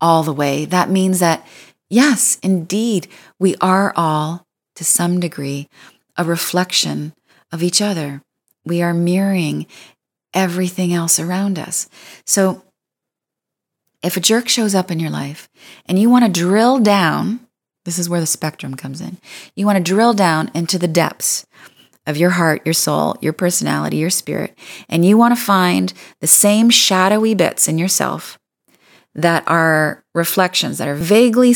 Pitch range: 165-205 Hz